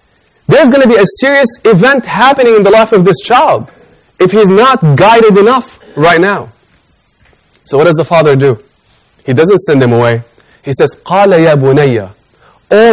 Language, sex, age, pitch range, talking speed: English, male, 20-39, 145-190 Hz, 175 wpm